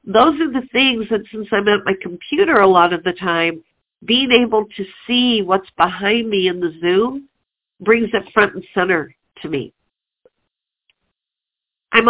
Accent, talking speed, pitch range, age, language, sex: American, 165 wpm, 190-255 Hz, 50-69, English, female